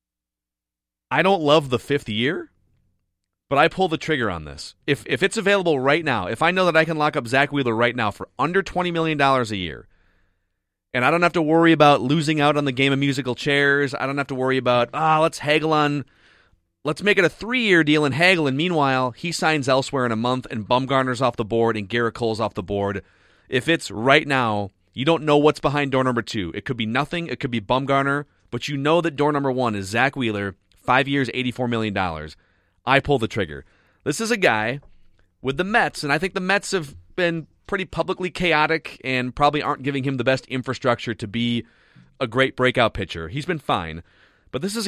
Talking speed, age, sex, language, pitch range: 220 wpm, 30-49, male, English, 105-150 Hz